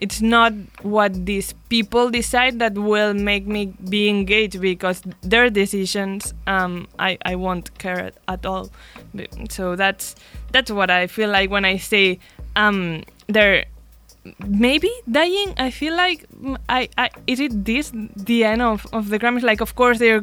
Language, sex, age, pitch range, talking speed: English, female, 20-39, 190-225 Hz, 165 wpm